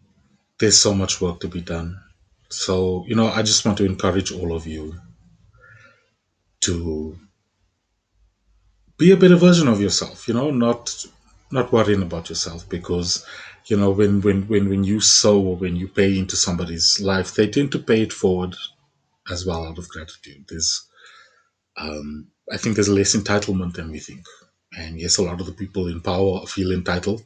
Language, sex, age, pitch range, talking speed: English, male, 30-49, 90-110 Hz, 175 wpm